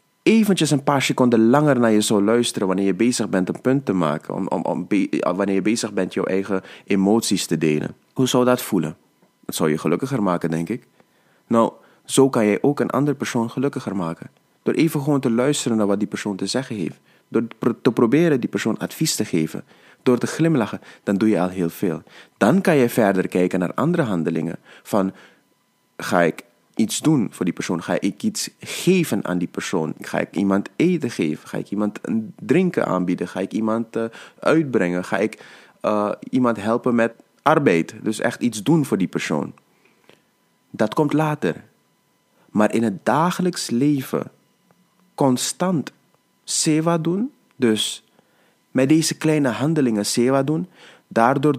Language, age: Dutch, 30-49